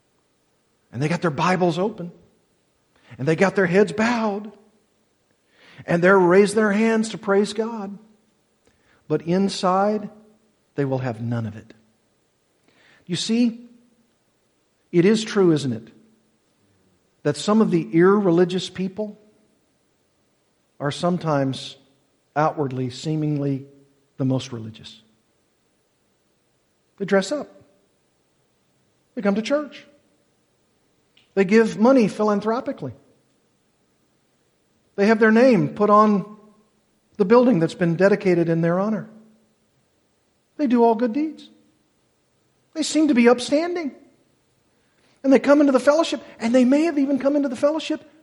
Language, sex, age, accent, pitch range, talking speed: English, male, 50-69, American, 155-230 Hz, 120 wpm